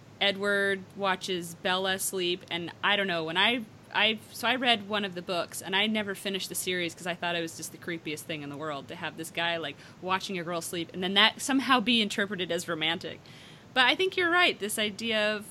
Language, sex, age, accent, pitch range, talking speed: English, female, 30-49, American, 170-215 Hz, 235 wpm